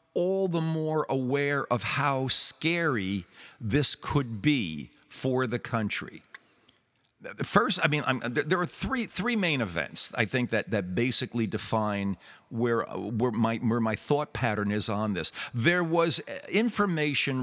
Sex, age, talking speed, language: male, 50-69, 145 wpm, English